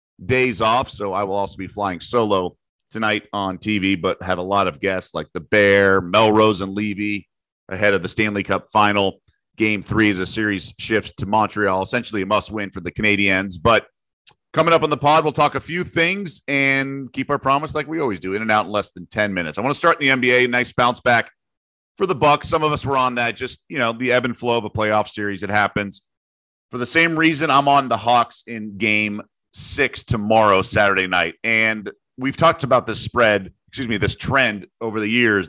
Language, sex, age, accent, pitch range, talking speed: English, male, 30-49, American, 95-125 Hz, 220 wpm